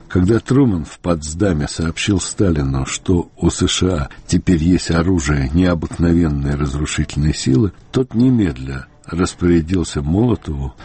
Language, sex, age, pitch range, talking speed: Russian, male, 60-79, 75-100 Hz, 105 wpm